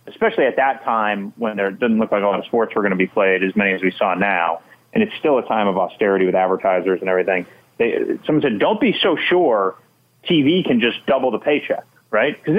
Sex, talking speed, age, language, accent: male, 235 wpm, 30-49, English, American